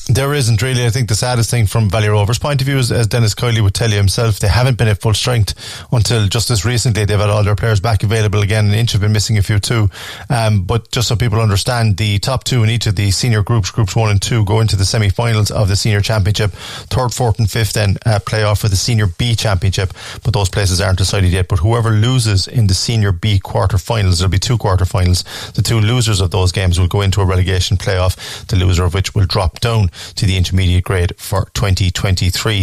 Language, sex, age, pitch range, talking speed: English, male, 30-49, 100-115 Hz, 240 wpm